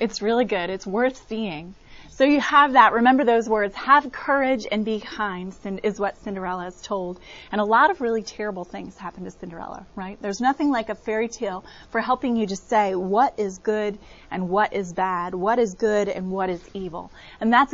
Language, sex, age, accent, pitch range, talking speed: English, female, 30-49, American, 195-250 Hz, 205 wpm